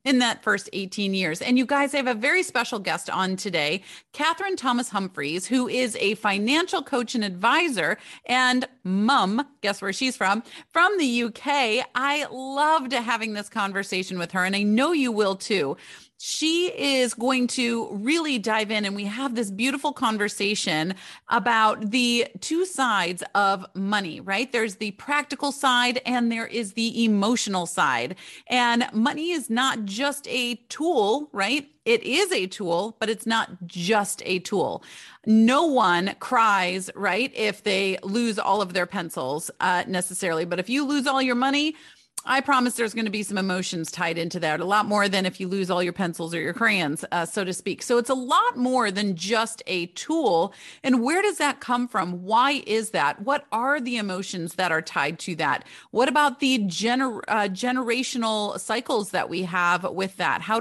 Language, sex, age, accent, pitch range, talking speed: English, female, 30-49, American, 195-255 Hz, 180 wpm